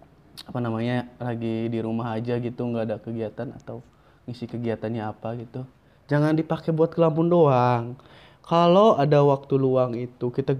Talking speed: 145 wpm